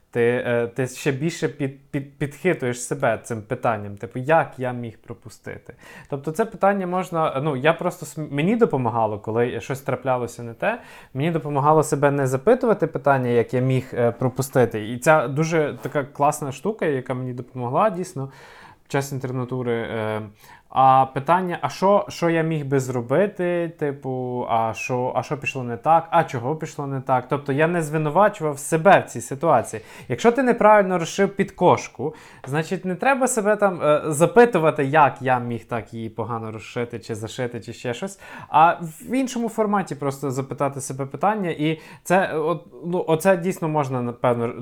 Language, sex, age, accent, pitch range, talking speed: Ukrainian, male, 20-39, native, 125-160 Hz, 165 wpm